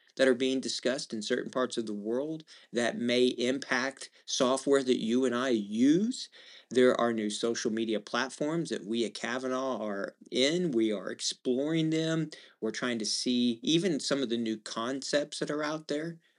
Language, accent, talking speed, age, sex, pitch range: English, American, 180 wpm, 40-59, male, 115-145 Hz